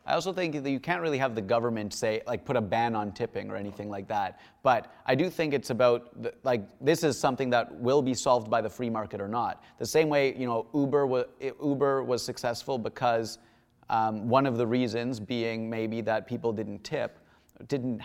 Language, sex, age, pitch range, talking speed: English, male, 30-49, 115-135 Hz, 210 wpm